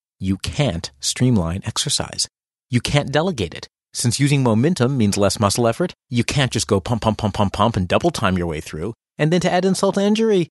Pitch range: 100-145 Hz